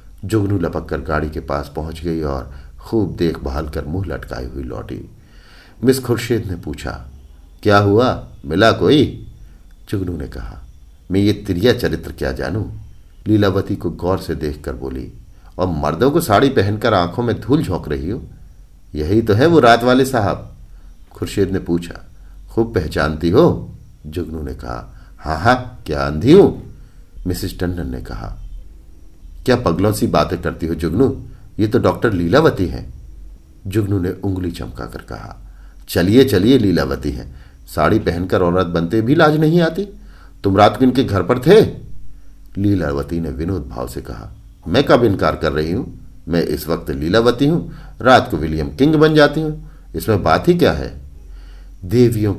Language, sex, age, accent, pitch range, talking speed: Hindi, male, 50-69, native, 75-105 Hz, 160 wpm